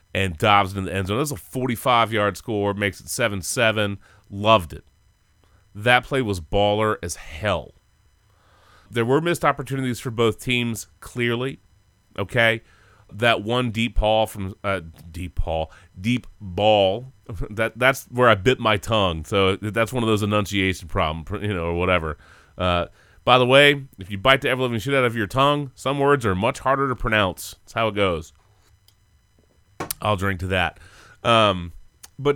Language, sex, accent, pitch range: English, male, American, 95-120 Hz